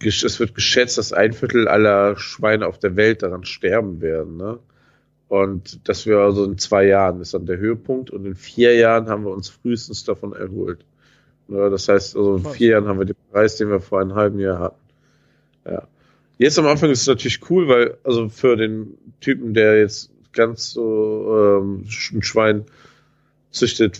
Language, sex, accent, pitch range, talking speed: German, male, German, 100-120 Hz, 190 wpm